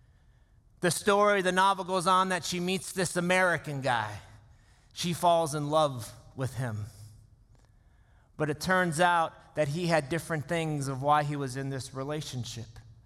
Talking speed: 155 wpm